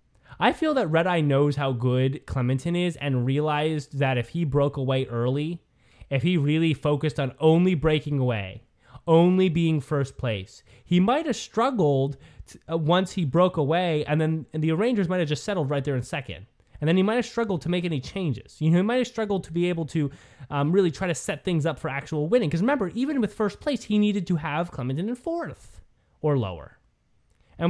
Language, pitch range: English, 140-205 Hz